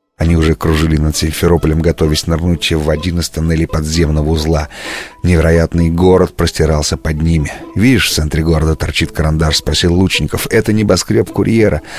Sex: male